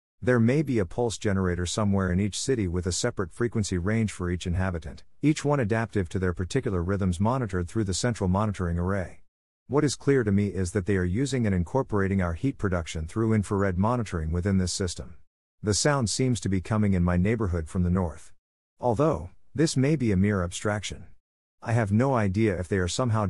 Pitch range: 90-115 Hz